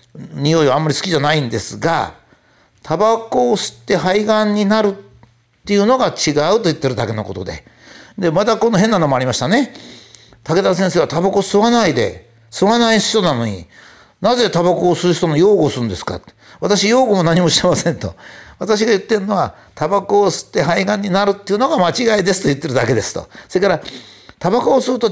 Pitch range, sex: 150-215 Hz, male